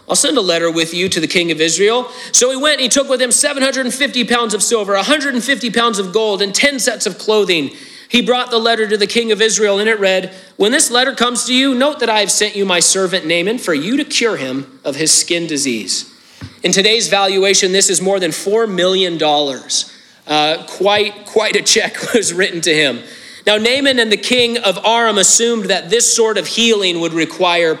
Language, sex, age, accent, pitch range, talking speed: English, male, 40-59, American, 175-240 Hz, 215 wpm